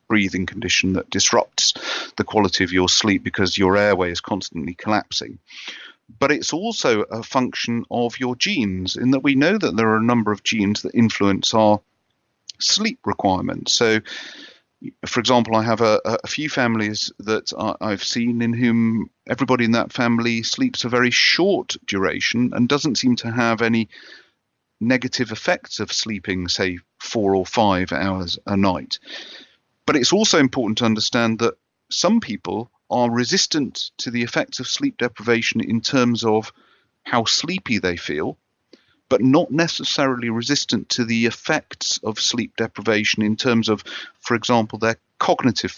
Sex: male